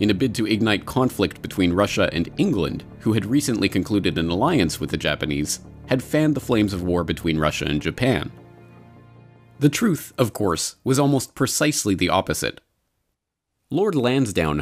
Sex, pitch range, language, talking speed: male, 85-120 Hz, English, 165 wpm